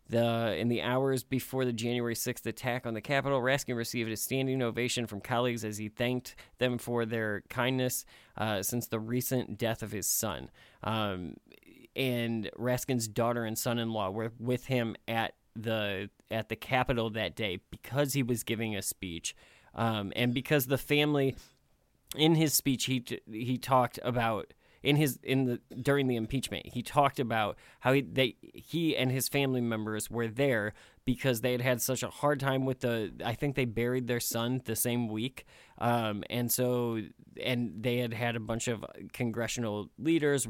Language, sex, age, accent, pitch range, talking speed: English, male, 30-49, American, 110-130 Hz, 180 wpm